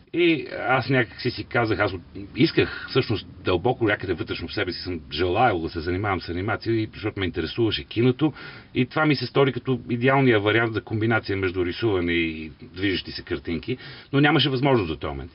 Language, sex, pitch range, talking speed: Bulgarian, male, 85-125 Hz, 190 wpm